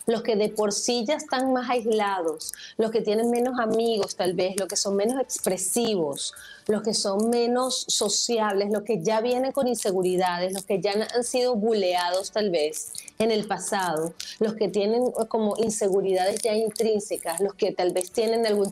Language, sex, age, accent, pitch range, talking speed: Spanish, female, 30-49, American, 195-230 Hz, 180 wpm